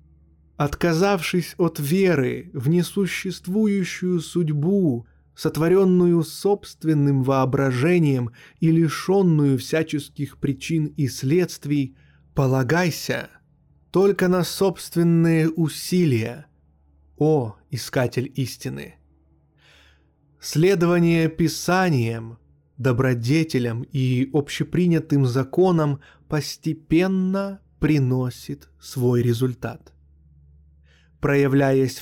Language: Russian